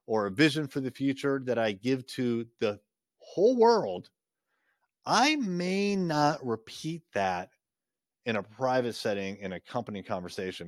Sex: male